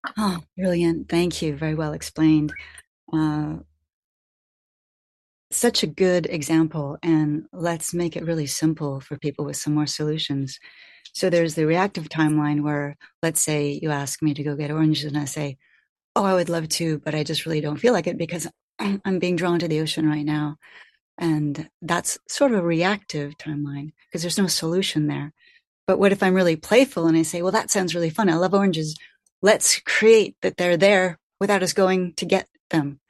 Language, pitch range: English, 155-195 Hz